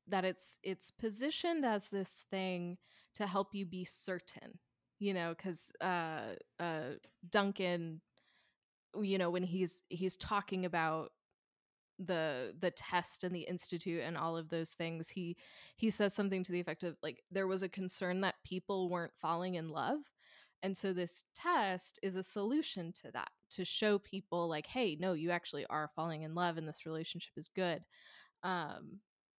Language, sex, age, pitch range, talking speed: English, female, 20-39, 165-195 Hz, 165 wpm